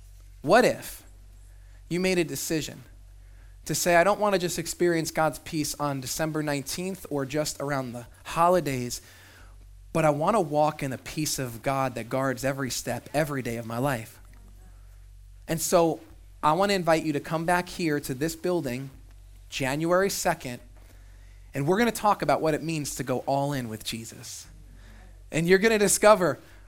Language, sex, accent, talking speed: English, male, American, 180 wpm